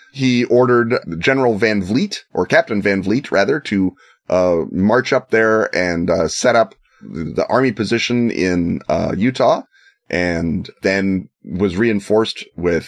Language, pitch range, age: English, 95-115 Hz, 30-49